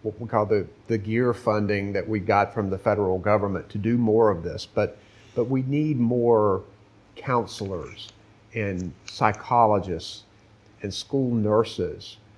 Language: English